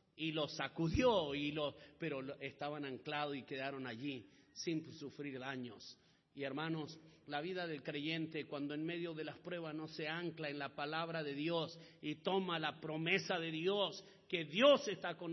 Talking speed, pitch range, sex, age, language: 170 wpm, 150-185 Hz, male, 50-69, Spanish